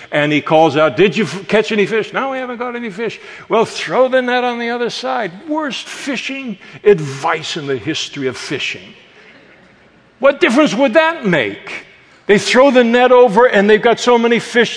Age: 60-79